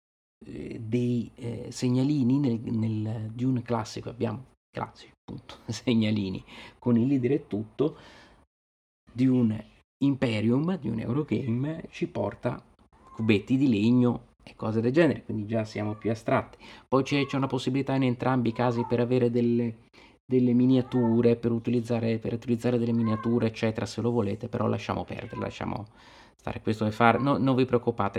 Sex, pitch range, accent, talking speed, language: male, 110-125 Hz, native, 145 wpm, Italian